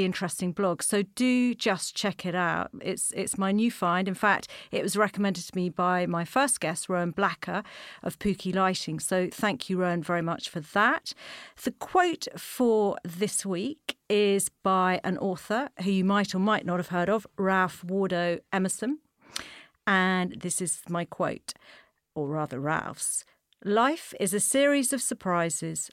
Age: 50-69